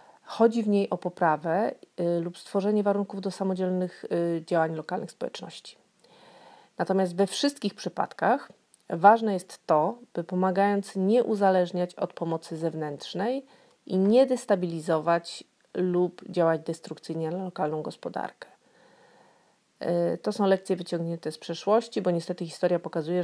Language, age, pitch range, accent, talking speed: Polish, 40-59, 160-190 Hz, native, 120 wpm